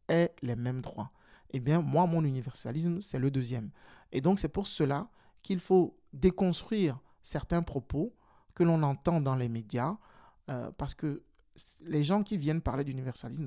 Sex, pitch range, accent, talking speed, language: male, 130-175 Hz, French, 165 wpm, French